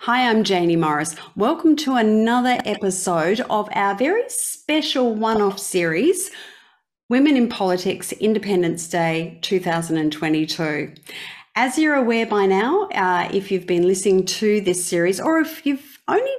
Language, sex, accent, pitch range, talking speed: English, female, Australian, 175-235 Hz, 135 wpm